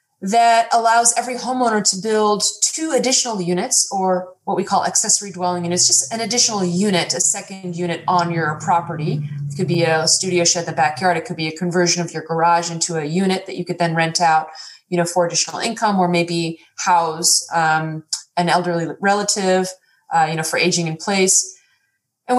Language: English